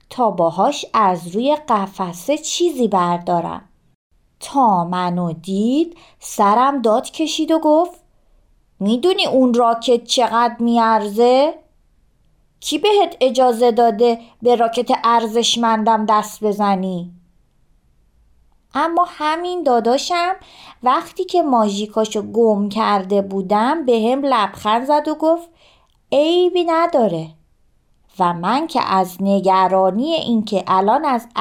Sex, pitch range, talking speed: female, 190-285 Hz, 105 wpm